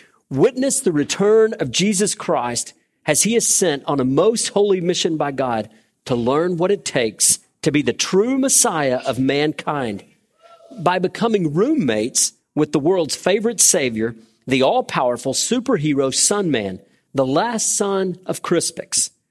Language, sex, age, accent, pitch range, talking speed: English, male, 40-59, American, 140-205 Hz, 145 wpm